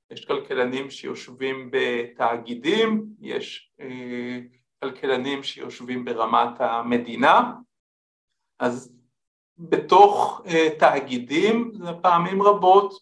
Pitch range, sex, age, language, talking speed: 125-205 Hz, male, 50-69, Hebrew, 80 wpm